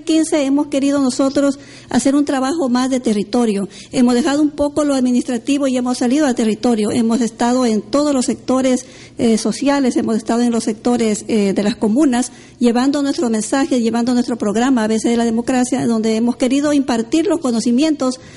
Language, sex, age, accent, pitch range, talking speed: Spanish, female, 50-69, American, 235-275 Hz, 180 wpm